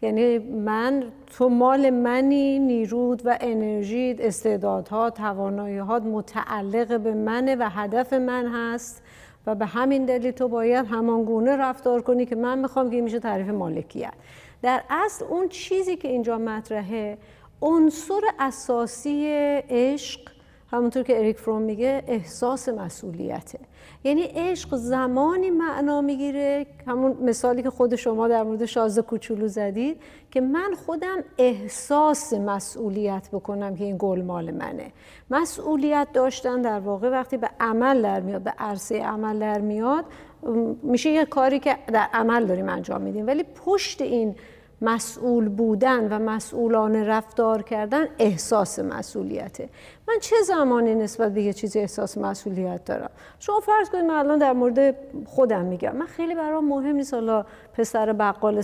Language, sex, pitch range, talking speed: Persian, female, 220-275 Hz, 140 wpm